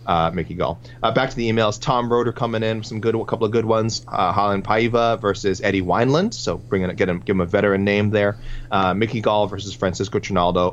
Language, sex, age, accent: English, male, 30-49, American